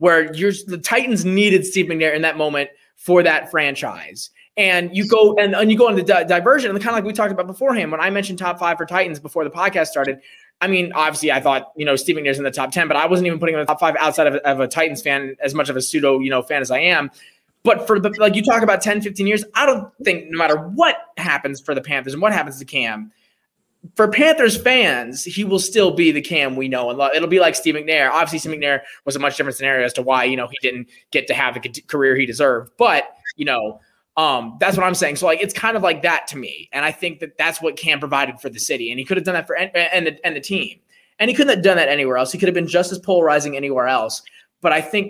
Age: 20-39